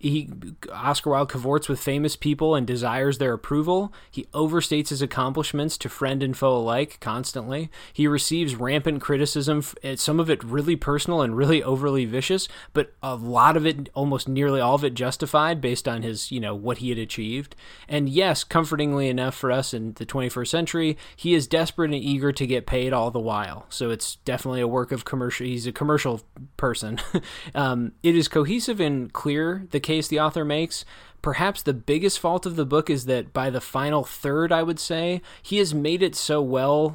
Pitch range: 125-150 Hz